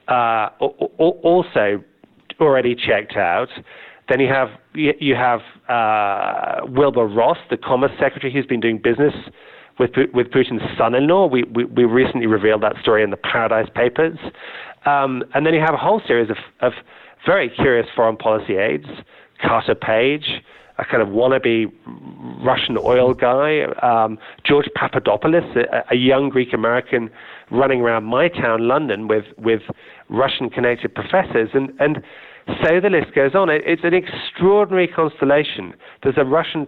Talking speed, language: 150 wpm, English